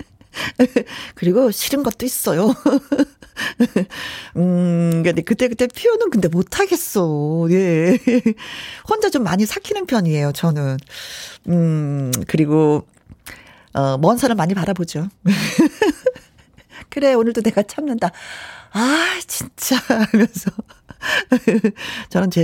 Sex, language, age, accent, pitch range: female, Korean, 40-59, native, 175-250 Hz